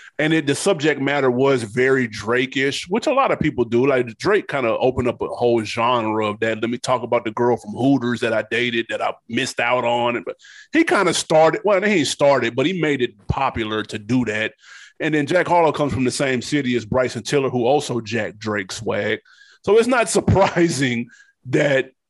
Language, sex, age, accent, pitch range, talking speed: English, male, 30-49, American, 125-170 Hz, 220 wpm